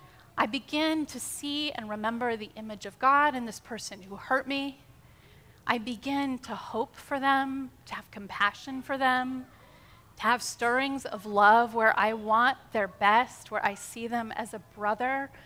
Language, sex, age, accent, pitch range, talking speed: English, female, 30-49, American, 220-285 Hz, 170 wpm